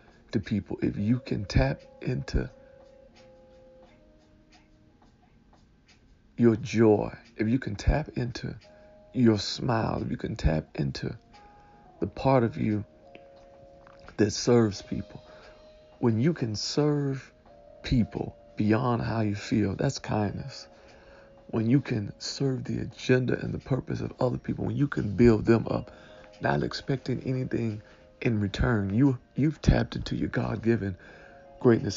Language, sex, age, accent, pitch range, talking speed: English, male, 50-69, American, 105-125 Hz, 130 wpm